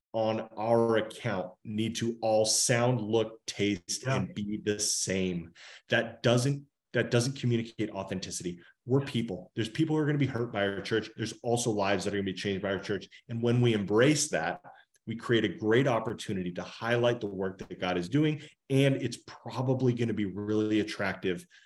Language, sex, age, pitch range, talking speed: English, male, 30-49, 110-155 Hz, 185 wpm